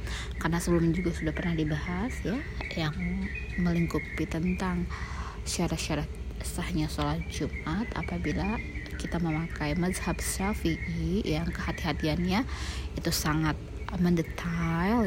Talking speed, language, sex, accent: 95 wpm, Indonesian, female, native